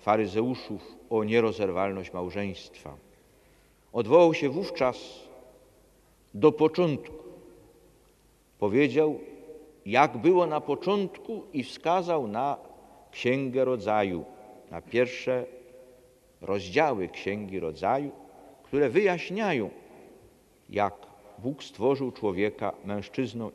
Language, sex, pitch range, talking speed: Polish, male, 105-145 Hz, 80 wpm